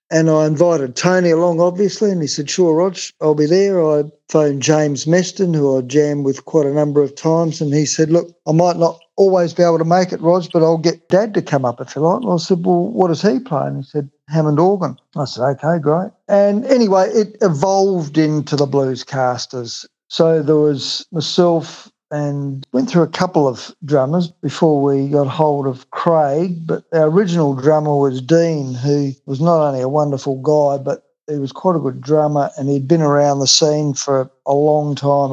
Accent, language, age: Australian, English, 50-69